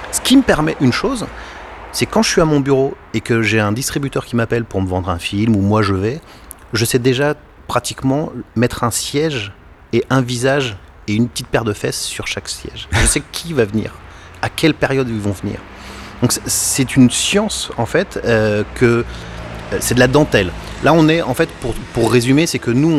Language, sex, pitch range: French, male, 100-135 Hz